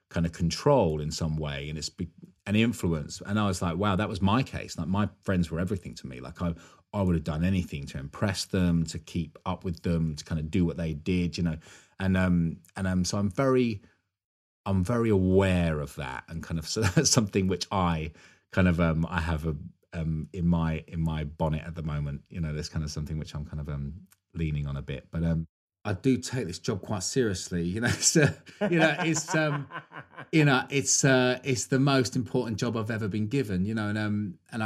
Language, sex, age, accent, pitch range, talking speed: English, male, 30-49, British, 85-105 Hz, 230 wpm